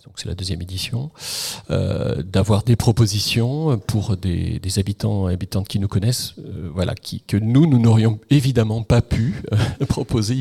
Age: 40-59